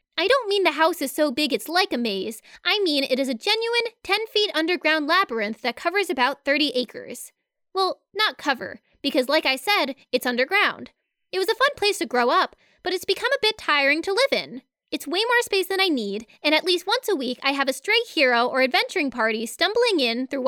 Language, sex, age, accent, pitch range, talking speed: English, female, 20-39, American, 255-395 Hz, 225 wpm